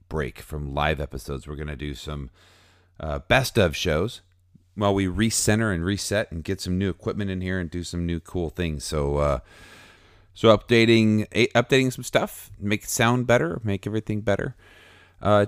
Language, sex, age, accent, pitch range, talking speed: English, male, 40-59, American, 80-105 Hz, 180 wpm